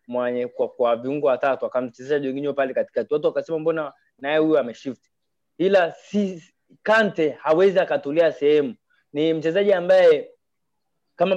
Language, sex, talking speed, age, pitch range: Swahili, male, 130 wpm, 20-39, 145-175 Hz